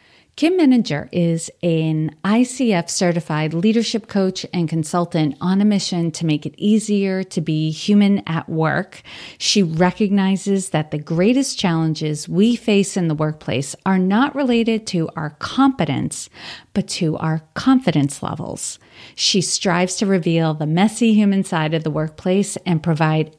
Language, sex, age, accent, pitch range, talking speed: English, female, 40-59, American, 160-210 Hz, 145 wpm